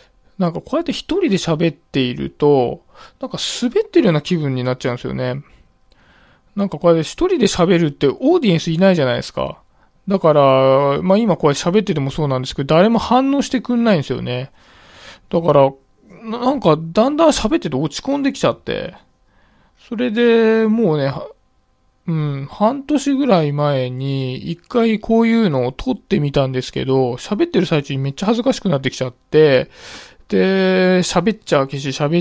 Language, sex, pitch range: Japanese, male, 140-220 Hz